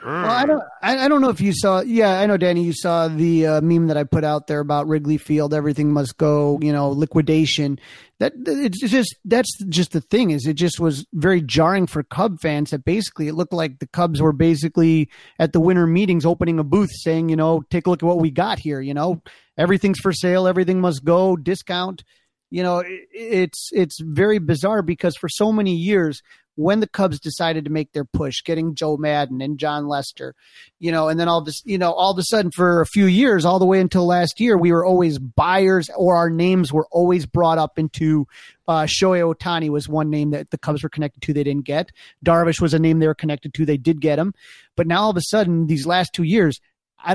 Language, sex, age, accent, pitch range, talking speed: English, male, 30-49, American, 155-185 Hz, 230 wpm